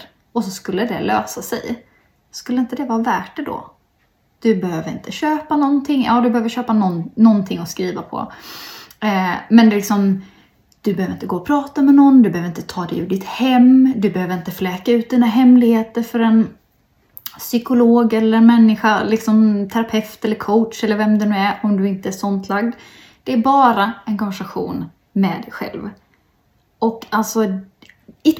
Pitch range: 200-250 Hz